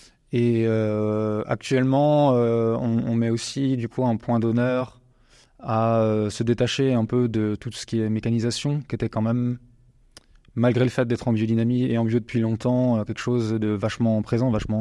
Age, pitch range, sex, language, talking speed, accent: 20-39, 105-125 Hz, male, French, 190 wpm, French